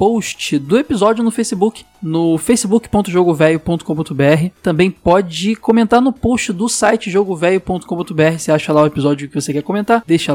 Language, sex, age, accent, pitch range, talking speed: Portuguese, male, 20-39, Brazilian, 150-205 Hz, 145 wpm